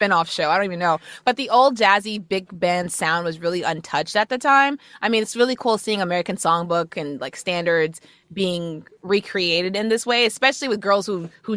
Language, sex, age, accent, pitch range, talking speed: English, female, 20-39, American, 165-210 Hz, 205 wpm